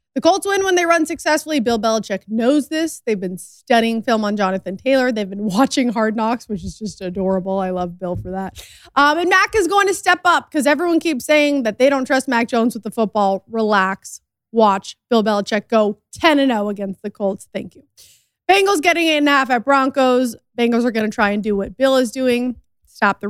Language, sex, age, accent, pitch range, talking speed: English, female, 20-39, American, 210-290 Hz, 220 wpm